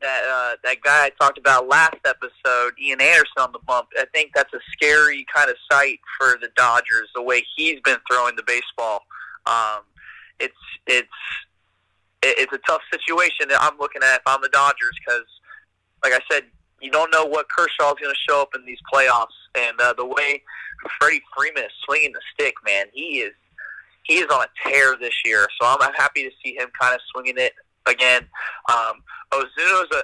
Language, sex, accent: English, male, American